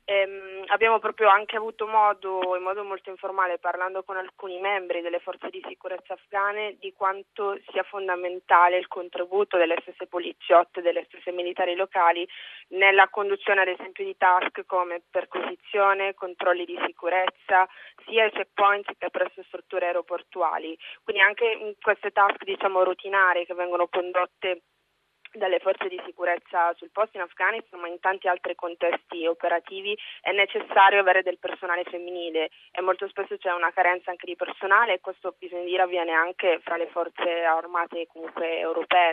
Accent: native